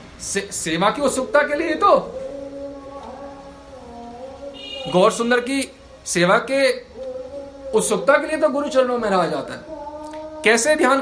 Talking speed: 135 wpm